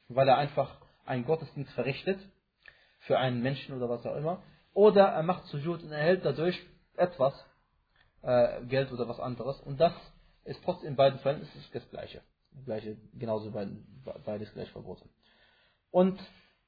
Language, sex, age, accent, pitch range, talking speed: German, male, 20-39, German, 120-140 Hz, 155 wpm